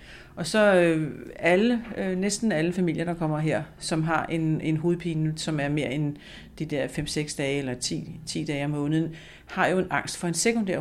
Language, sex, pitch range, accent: Danish, female, 145-170 Hz, native